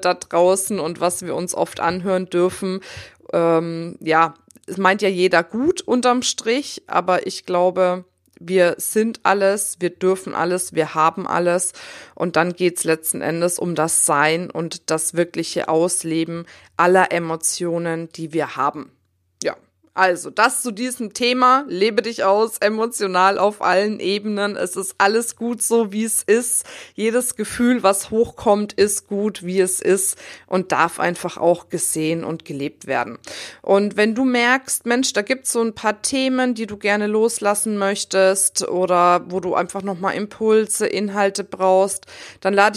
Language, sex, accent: German, female, German